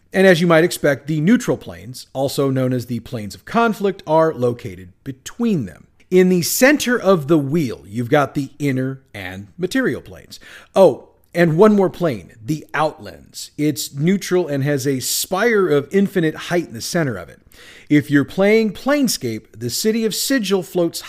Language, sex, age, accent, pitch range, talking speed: English, male, 40-59, American, 130-175 Hz, 175 wpm